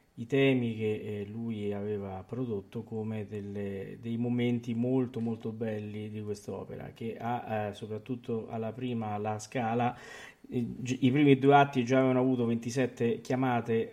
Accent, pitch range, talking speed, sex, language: native, 110-130 Hz, 135 wpm, male, Italian